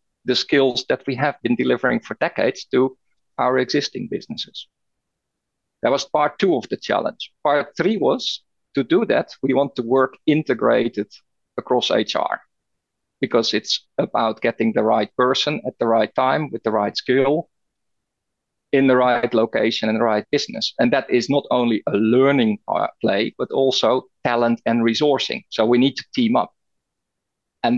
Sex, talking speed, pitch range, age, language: male, 165 wpm, 120-150 Hz, 50-69, English